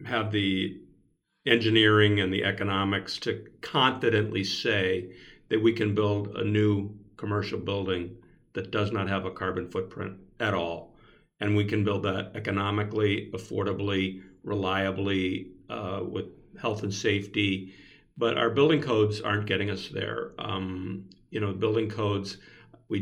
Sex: male